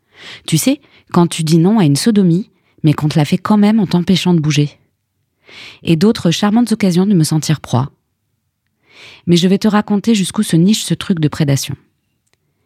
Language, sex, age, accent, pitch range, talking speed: French, female, 20-39, French, 140-180 Hz, 190 wpm